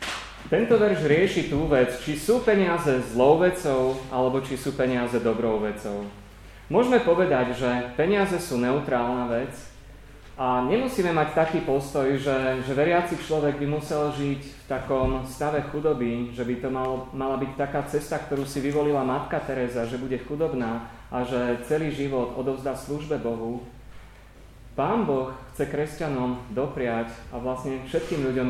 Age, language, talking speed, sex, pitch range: 30-49, Slovak, 150 wpm, male, 125-150 Hz